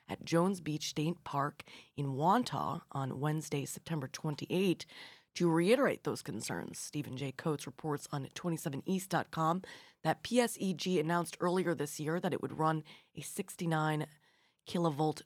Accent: American